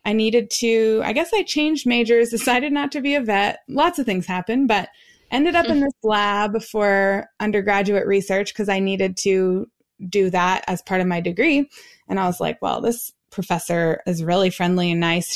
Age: 20-39